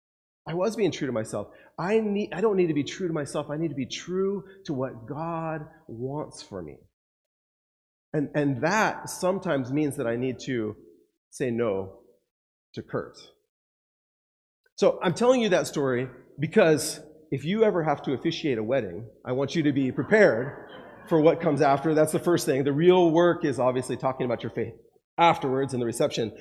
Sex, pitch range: male, 140-185 Hz